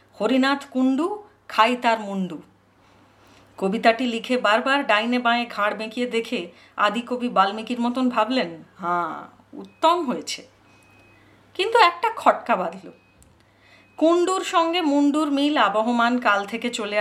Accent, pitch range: native, 195-295 Hz